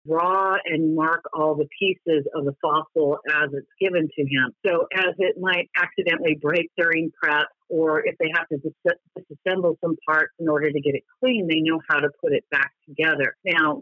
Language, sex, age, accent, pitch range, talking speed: English, female, 50-69, American, 150-195 Hz, 195 wpm